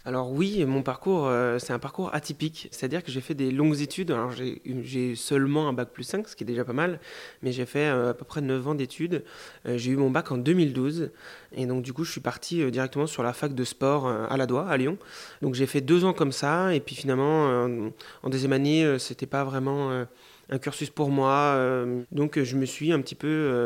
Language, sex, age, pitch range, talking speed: French, male, 30-49, 125-150 Hz, 250 wpm